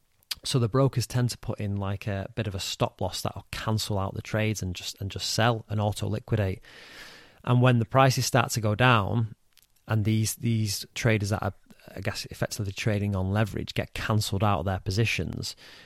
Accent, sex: British, male